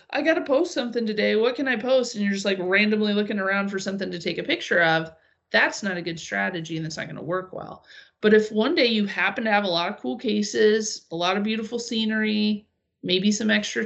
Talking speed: 245 wpm